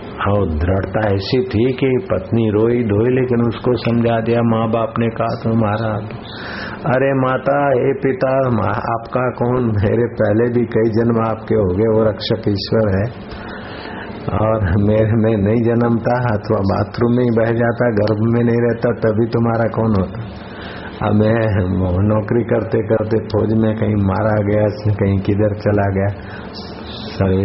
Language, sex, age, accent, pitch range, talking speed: Hindi, male, 60-79, native, 105-120 Hz, 155 wpm